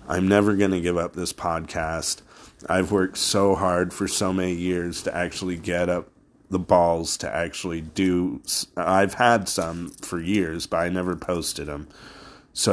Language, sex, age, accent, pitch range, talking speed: English, male, 30-49, American, 85-95 Hz, 170 wpm